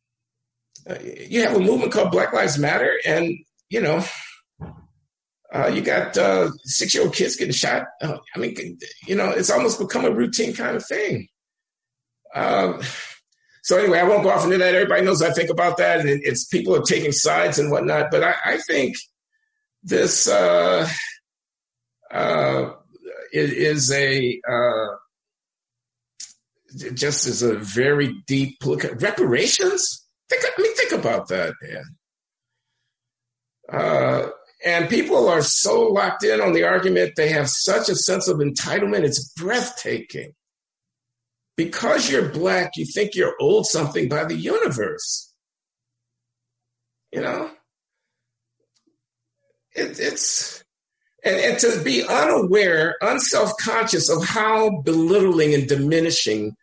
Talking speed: 140 wpm